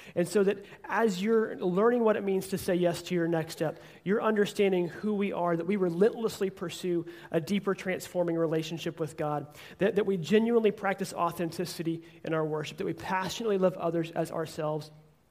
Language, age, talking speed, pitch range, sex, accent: English, 30-49, 185 wpm, 165-200 Hz, male, American